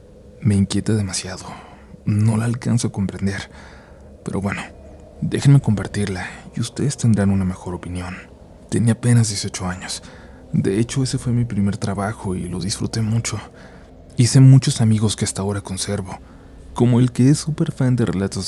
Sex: male